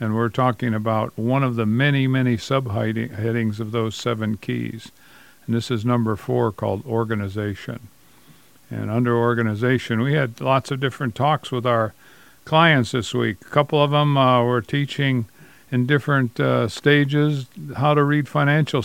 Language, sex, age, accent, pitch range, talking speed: English, male, 50-69, American, 115-145 Hz, 160 wpm